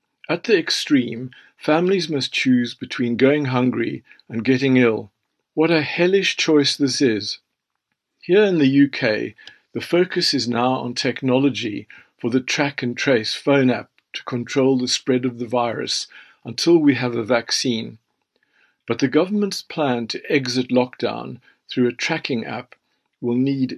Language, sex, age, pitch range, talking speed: English, male, 50-69, 120-140 Hz, 150 wpm